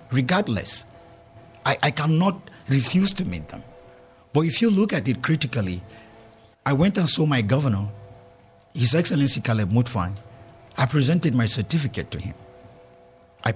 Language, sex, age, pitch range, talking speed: English, male, 50-69, 115-155 Hz, 140 wpm